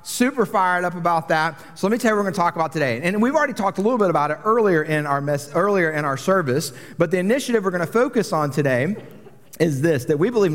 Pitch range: 140-180 Hz